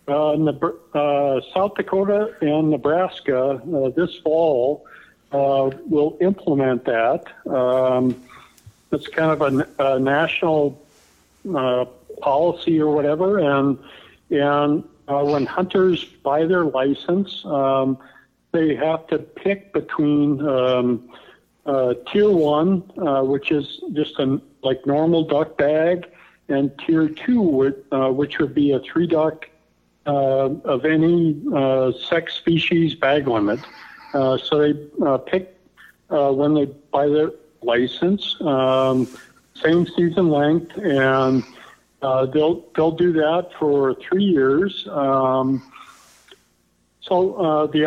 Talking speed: 125 wpm